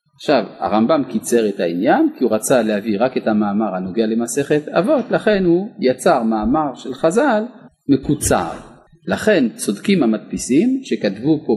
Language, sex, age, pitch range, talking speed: Hebrew, male, 40-59, 115-180 Hz, 140 wpm